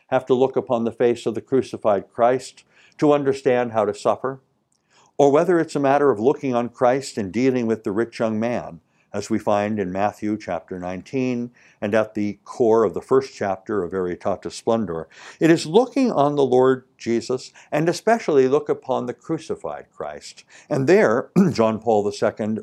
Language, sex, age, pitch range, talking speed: English, male, 60-79, 110-150 Hz, 180 wpm